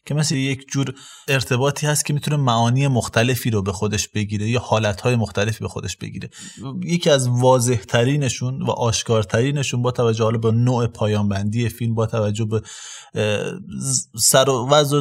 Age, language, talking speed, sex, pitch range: 30-49, Persian, 140 wpm, male, 110-135 Hz